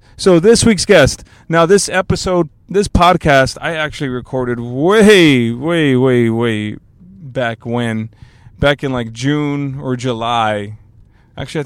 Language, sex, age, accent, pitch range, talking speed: English, male, 20-39, American, 115-145 Hz, 130 wpm